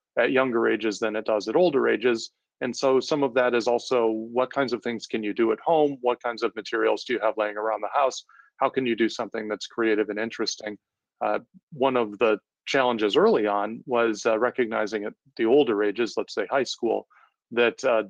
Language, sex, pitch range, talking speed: English, male, 110-130 Hz, 215 wpm